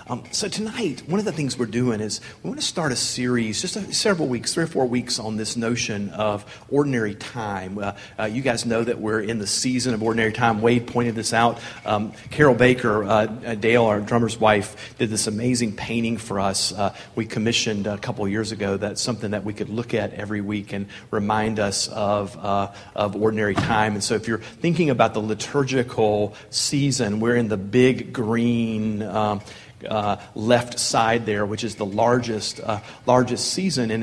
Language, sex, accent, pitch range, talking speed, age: English, male, American, 105-125 Hz, 200 wpm, 40-59